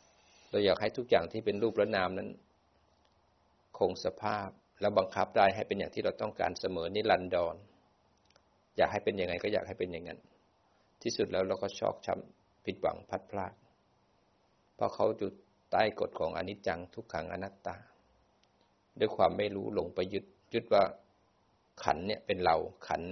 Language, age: Thai, 60-79